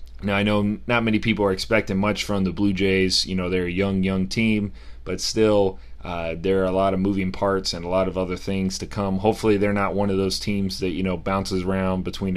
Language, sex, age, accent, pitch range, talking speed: English, male, 30-49, American, 90-105 Hz, 245 wpm